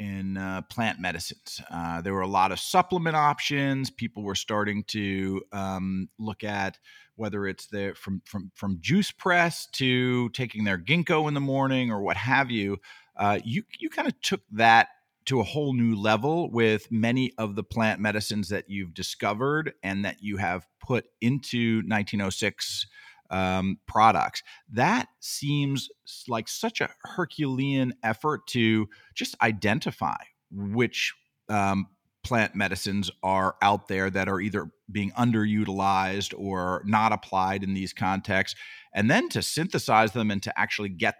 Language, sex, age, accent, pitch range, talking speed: English, male, 40-59, American, 95-125 Hz, 155 wpm